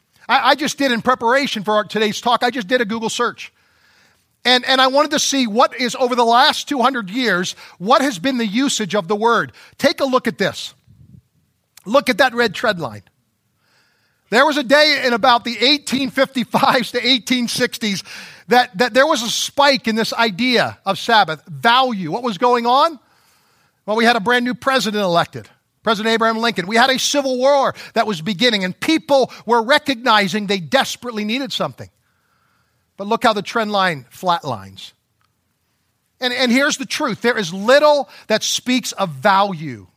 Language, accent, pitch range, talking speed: English, American, 155-250 Hz, 175 wpm